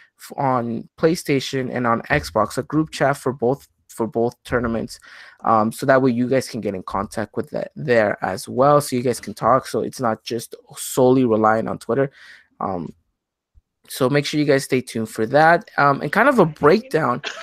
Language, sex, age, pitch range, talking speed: English, male, 20-39, 120-155 Hz, 195 wpm